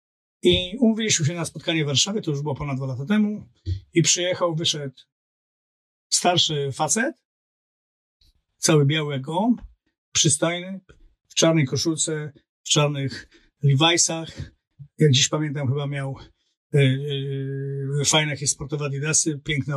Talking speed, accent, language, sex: 125 wpm, native, Polish, male